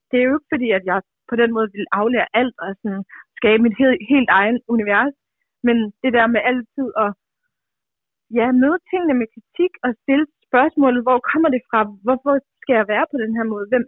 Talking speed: 210 wpm